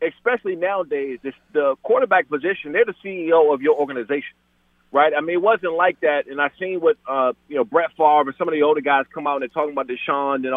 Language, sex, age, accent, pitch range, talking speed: English, male, 30-49, American, 150-220 Hz, 235 wpm